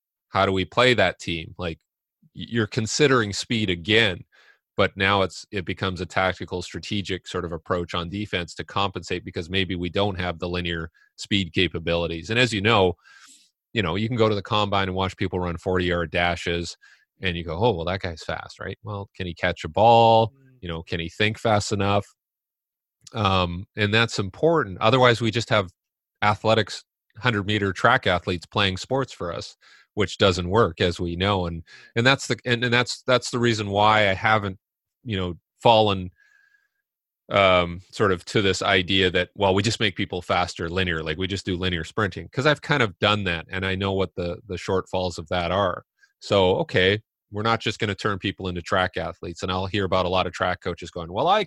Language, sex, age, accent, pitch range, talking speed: English, male, 30-49, American, 90-110 Hz, 205 wpm